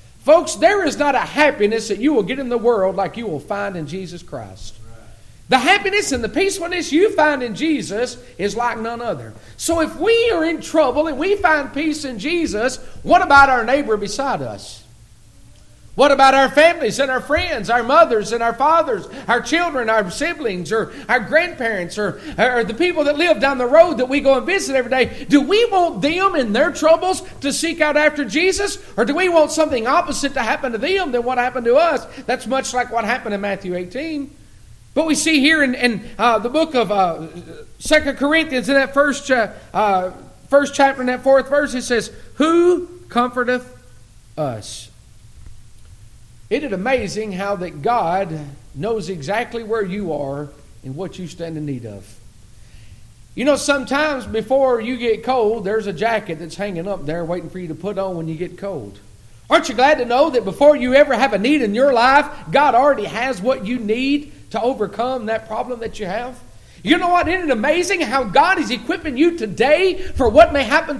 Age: 50-69